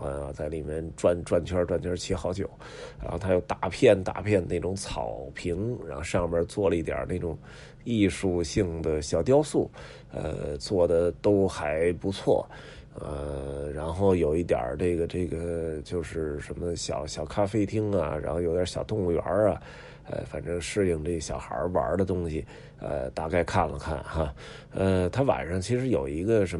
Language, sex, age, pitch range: Chinese, male, 20-39, 80-100 Hz